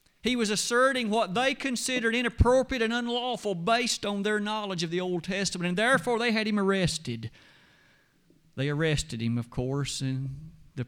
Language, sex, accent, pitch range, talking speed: English, male, American, 150-215 Hz, 165 wpm